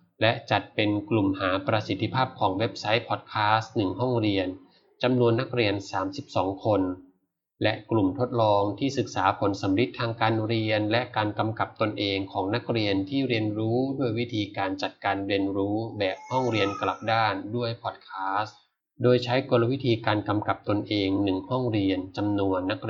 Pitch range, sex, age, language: 100-120 Hz, male, 20-39, Thai